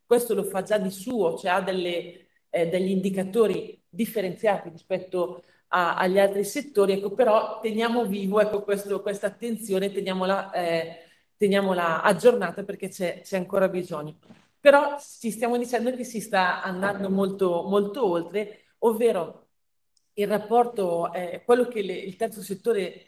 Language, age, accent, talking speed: Italian, 40-59, native, 145 wpm